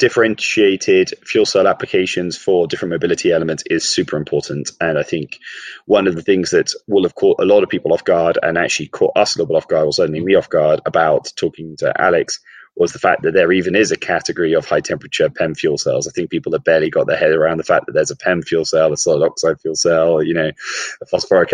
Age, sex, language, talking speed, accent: 20-39, male, English, 240 wpm, British